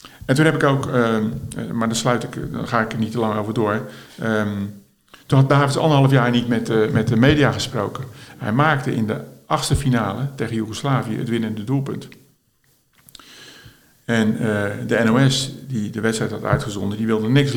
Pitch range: 110-135 Hz